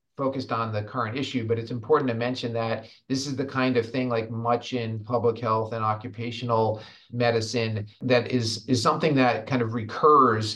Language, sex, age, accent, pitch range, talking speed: English, male, 40-59, American, 110-125 Hz, 190 wpm